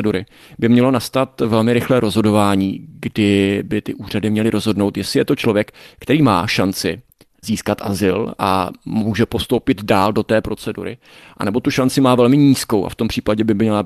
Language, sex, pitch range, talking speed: Czech, male, 100-115 Hz, 175 wpm